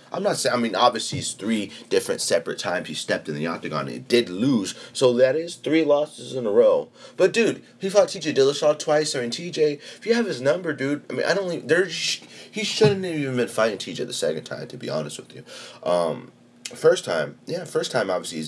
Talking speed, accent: 235 wpm, American